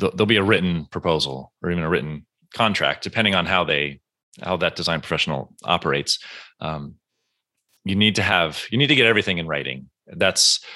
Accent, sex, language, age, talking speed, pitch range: American, male, English, 30-49, 180 wpm, 75-95 Hz